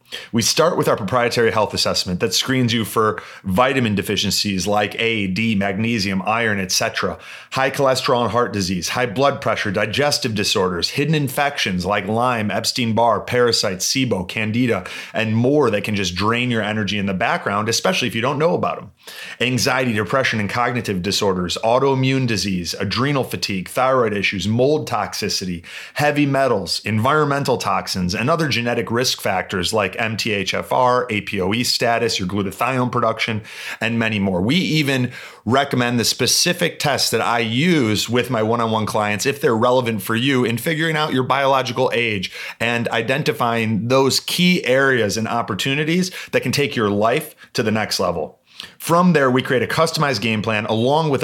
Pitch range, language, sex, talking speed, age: 105-130 Hz, English, male, 160 wpm, 30-49